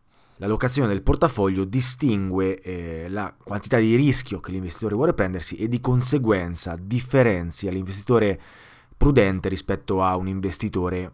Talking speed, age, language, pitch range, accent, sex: 130 wpm, 20-39, Italian, 100-140 Hz, native, male